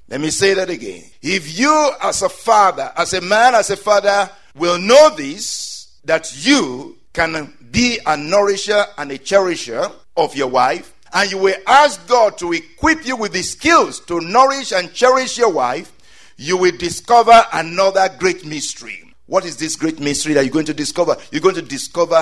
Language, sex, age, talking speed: English, male, 50-69, 185 wpm